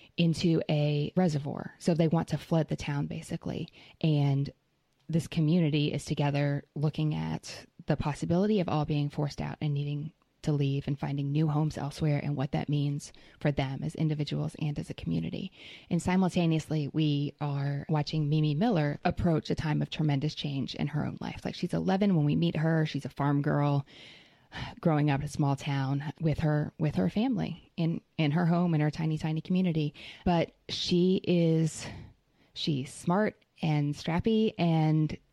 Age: 20-39